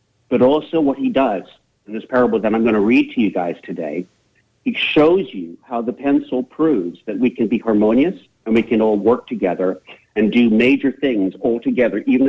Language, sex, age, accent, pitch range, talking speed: English, male, 50-69, American, 100-130 Hz, 205 wpm